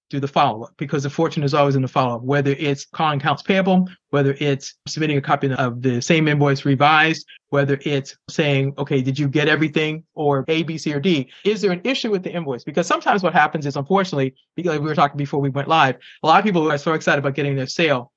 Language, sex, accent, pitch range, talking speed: English, male, American, 140-170 Hz, 240 wpm